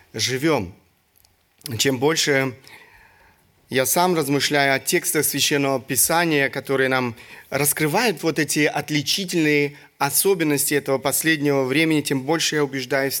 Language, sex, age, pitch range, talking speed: Russian, male, 30-49, 130-160 Hz, 110 wpm